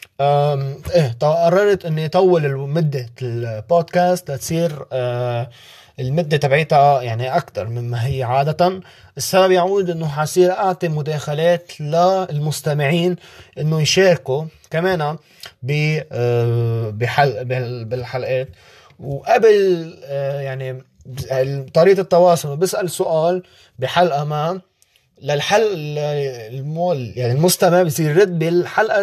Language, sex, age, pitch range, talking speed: Arabic, male, 20-39, 135-175 Hz, 95 wpm